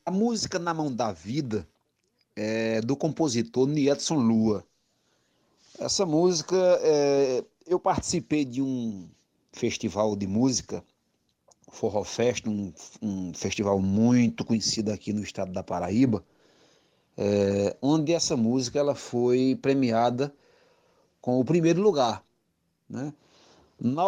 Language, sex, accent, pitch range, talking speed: Portuguese, male, Brazilian, 110-140 Hz, 115 wpm